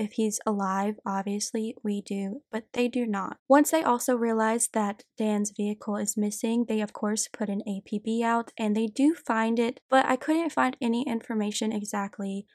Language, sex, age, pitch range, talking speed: English, female, 10-29, 210-260 Hz, 175 wpm